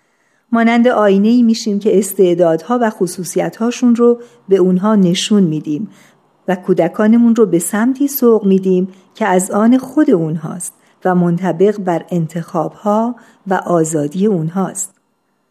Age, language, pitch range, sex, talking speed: 50-69, Persian, 180-220 Hz, female, 125 wpm